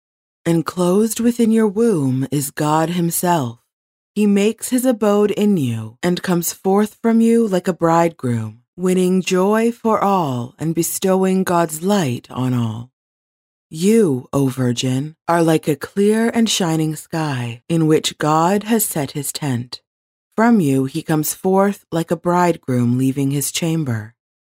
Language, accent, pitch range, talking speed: English, American, 135-195 Hz, 145 wpm